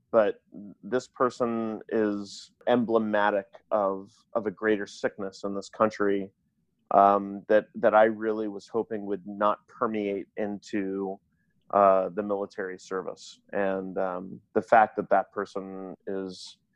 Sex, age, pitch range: male, 30-49, 100-110 Hz